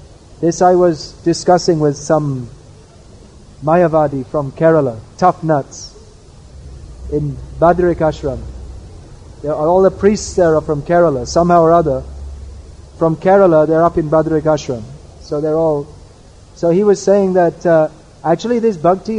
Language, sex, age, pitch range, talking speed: English, male, 30-49, 130-190 Hz, 140 wpm